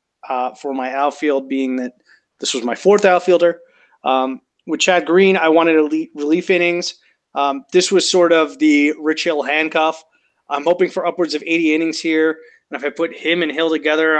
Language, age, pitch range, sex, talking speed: English, 30-49, 145-165 Hz, male, 190 wpm